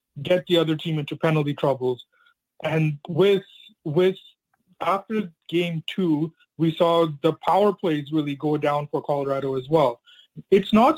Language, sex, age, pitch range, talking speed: English, male, 30-49, 155-190 Hz, 150 wpm